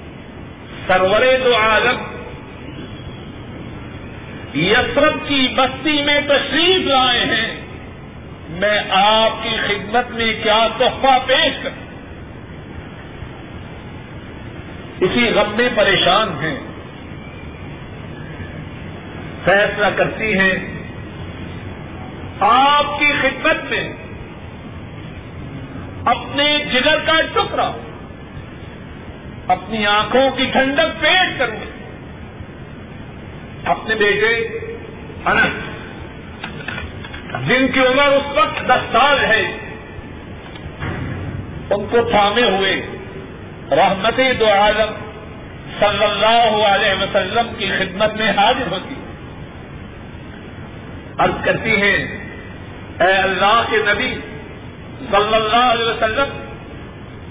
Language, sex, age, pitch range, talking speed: Urdu, male, 50-69, 210-285 Hz, 80 wpm